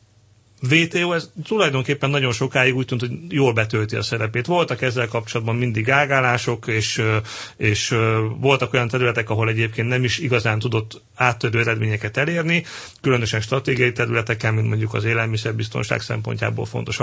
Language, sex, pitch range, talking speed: Hungarian, male, 115-140 Hz, 140 wpm